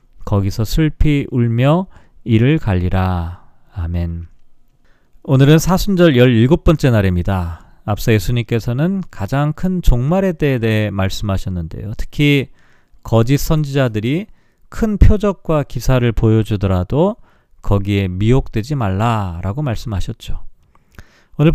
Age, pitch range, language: 40-59, 105-155 Hz, Korean